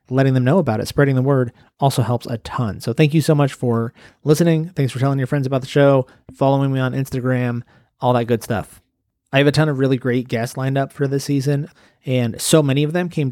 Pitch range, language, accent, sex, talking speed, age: 125-150 Hz, English, American, male, 245 wpm, 30-49